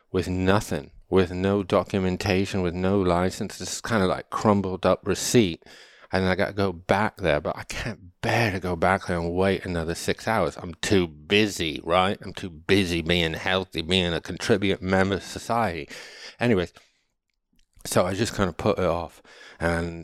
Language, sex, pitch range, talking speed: English, male, 90-105 Hz, 180 wpm